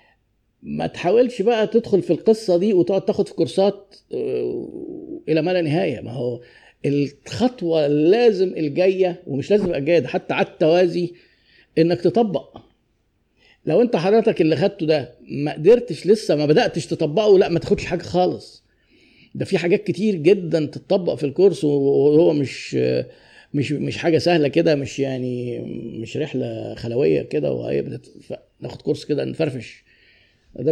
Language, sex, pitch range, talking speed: Arabic, male, 145-195 Hz, 140 wpm